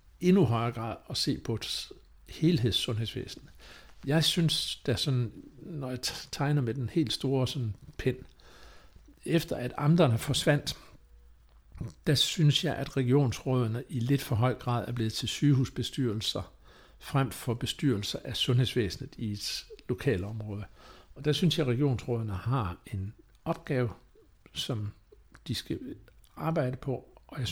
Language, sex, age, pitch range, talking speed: Danish, male, 60-79, 110-140 Hz, 135 wpm